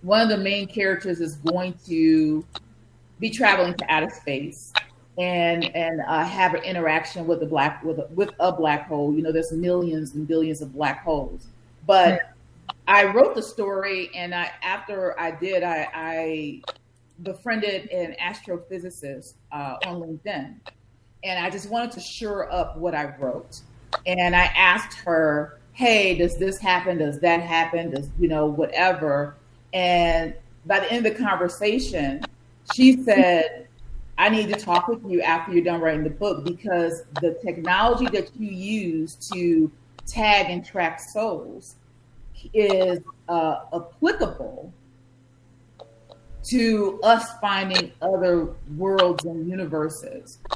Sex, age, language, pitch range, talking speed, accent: female, 40-59, English, 150-190 Hz, 145 wpm, American